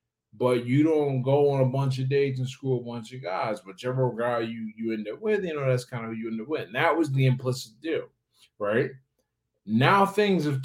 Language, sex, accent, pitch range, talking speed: English, male, American, 115-140 Hz, 235 wpm